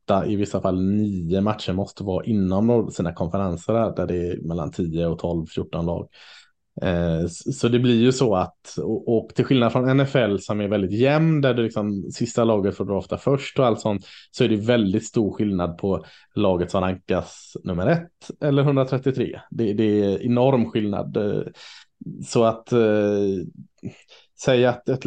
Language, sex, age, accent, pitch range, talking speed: Swedish, male, 30-49, Norwegian, 95-120 Hz, 170 wpm